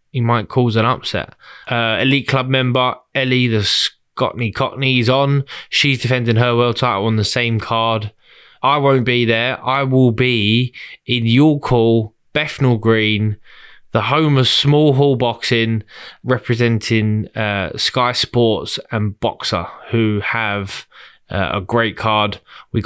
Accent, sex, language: British, male, English